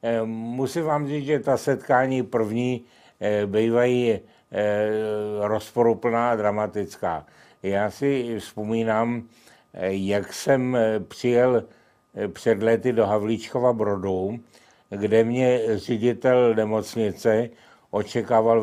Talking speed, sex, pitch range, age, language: 85 wpm, male, 100-120 Hz, 60-79, Czech